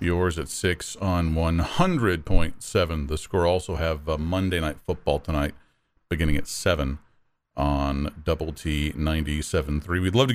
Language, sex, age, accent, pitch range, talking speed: English, male, 40-59, American, 80-115 Hz, 135 wpm